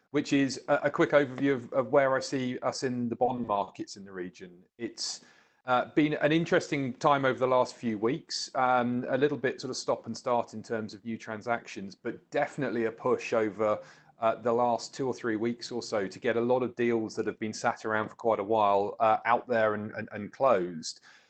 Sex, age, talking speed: male, 30-49, 225 wpm